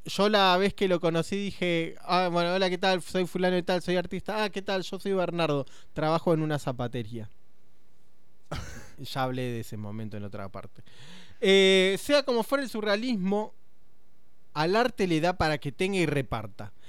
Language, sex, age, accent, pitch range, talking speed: Spanish, male, 20-39, Argentinian, 135-195 Hz, 180 wpm